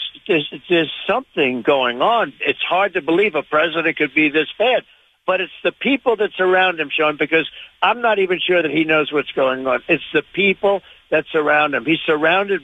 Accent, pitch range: American, 160-200 Hz